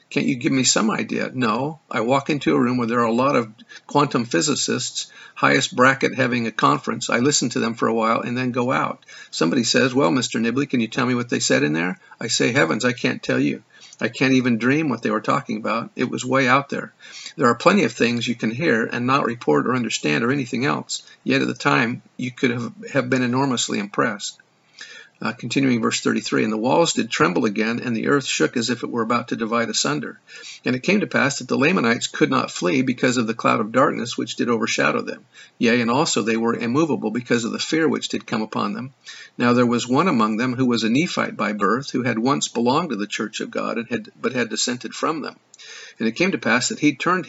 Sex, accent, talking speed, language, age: male, American, 240 wpm, English, 50-69